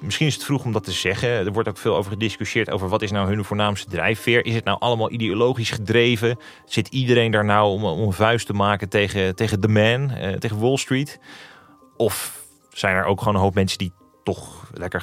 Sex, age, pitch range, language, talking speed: male, 30-49, 100-120 Hz, Dutch, 220 wpm